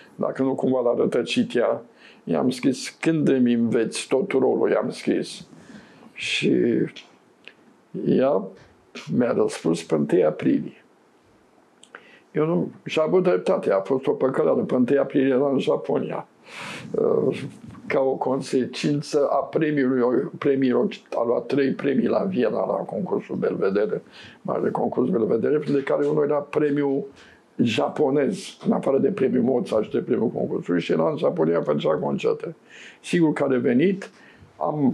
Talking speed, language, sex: 140 wpm, Romanian, male